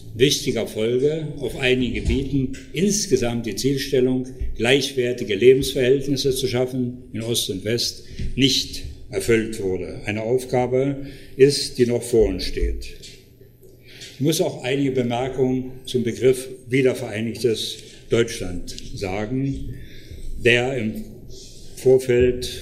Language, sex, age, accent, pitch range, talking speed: German, male, 60-79, German, 115-135 Hz, 105 wpm